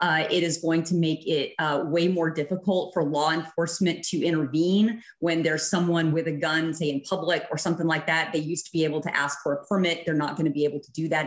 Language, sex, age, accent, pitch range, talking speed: English, female, 30-49, American, 155-175 Hz, 255 wpm